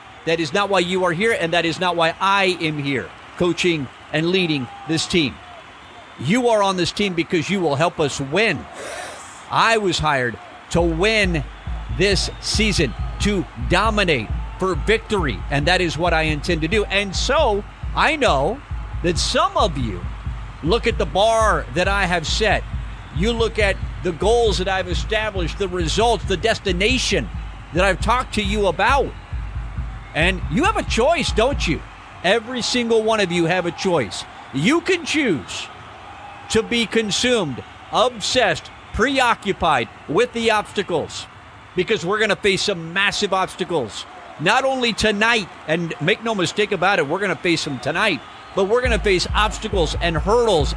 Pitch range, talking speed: 170-220 Hz, 165 wpm